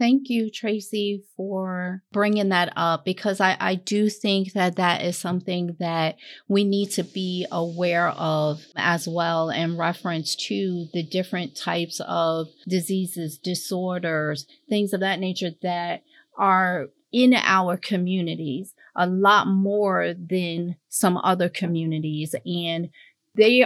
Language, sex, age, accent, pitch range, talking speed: English, female, 40-59, American, 175-205 Hz, 130 wpm